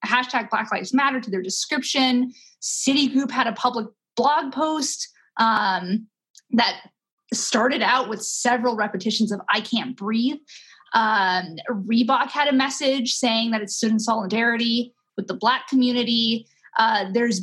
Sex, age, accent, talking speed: female, 20-39, American, 140 wpm